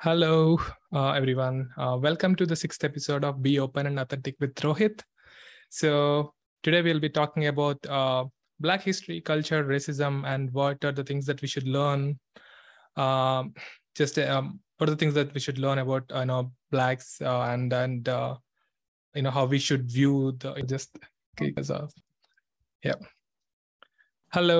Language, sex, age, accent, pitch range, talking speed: English, male, 20-39, Indian, 135-155 Hz, 165 wpm